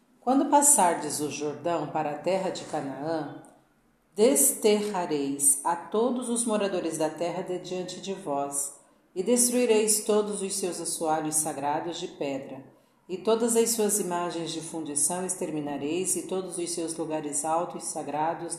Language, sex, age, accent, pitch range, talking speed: Portuguese, female, 50-69, Brazilian, 160-215 Hz, 145 wpm